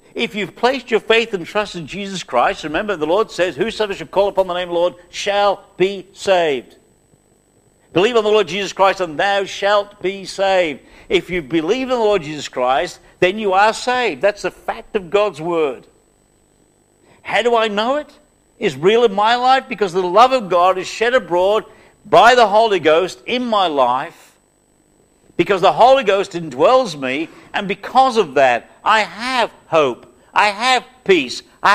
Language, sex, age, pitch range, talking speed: English, male, 60-79, 155-210 Hz, 185 wpm